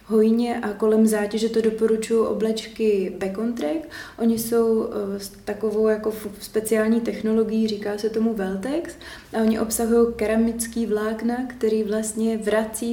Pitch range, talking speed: 215-230 Hz, 125 wpm